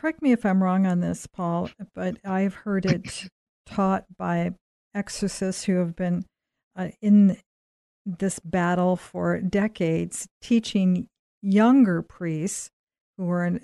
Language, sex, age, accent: English, female, 50-69, American